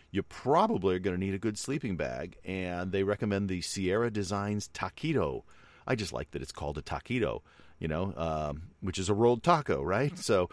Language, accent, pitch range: English, American, 75-100 Hz